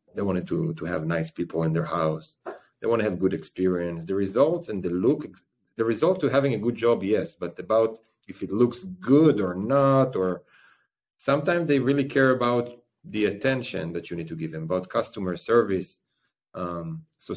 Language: English